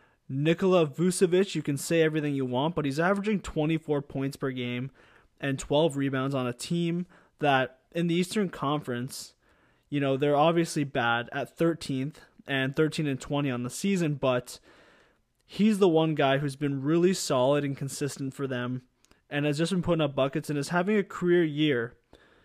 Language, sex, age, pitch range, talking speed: English, male, 20-39, 135-165 Hz, 175 wpm